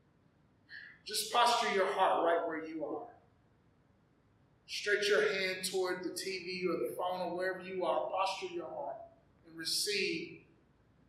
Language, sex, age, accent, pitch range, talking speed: English, male, 30-49, American, 200-265 Hz, 140 wpm